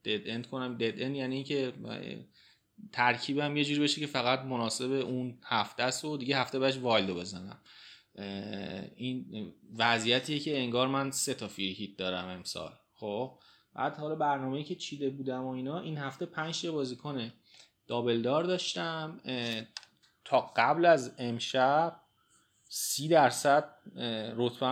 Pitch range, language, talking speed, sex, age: 115-145 Hz, Persian, 135 wpm, male, 30-49